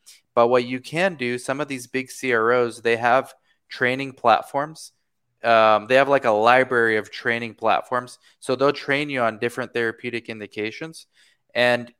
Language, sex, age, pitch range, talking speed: English, male, 20-39, 115-135 Hz, 160 wpm